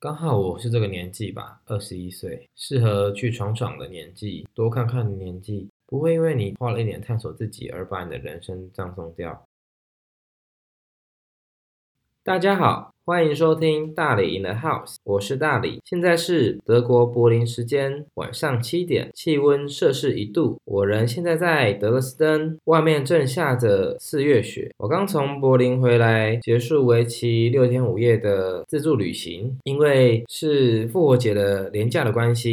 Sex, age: male, 20-39